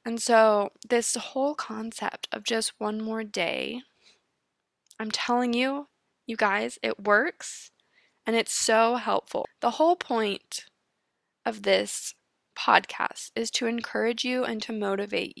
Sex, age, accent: female, 10-29, American